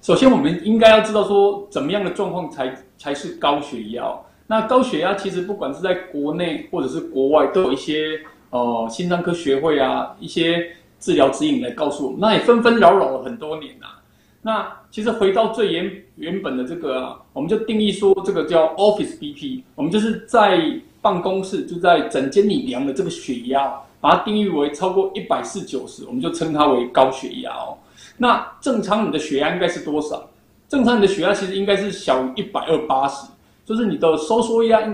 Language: Chinese